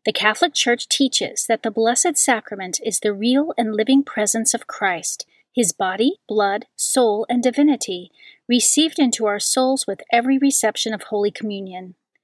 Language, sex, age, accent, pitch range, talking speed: English, female, 40-59, American, 200-255 Hz, 155 wpm